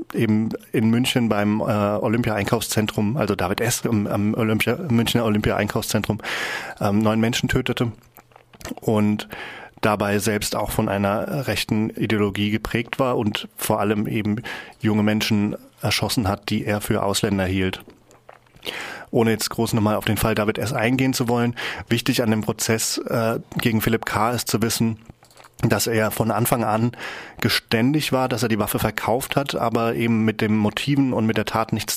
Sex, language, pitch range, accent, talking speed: male, German, 105-115 Hz, German, 160 wpm